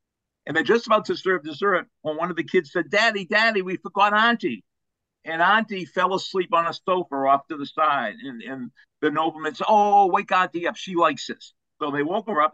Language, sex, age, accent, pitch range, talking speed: English, male, 50-69, American, 135-195 Hz, 220 wpm